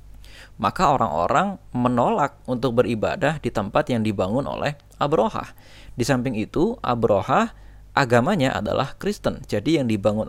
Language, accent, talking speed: Indonesian, native, 120 wpm